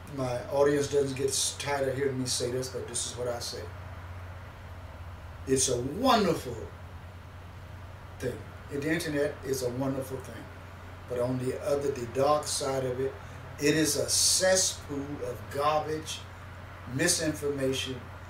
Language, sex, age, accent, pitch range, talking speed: English, male, 50-69, American, 95-145 Hz, 140 wpm